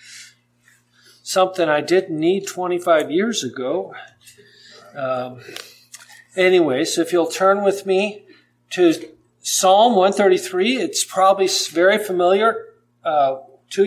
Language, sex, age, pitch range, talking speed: English, male, 50-69, 130-210 Hz, 105 wpm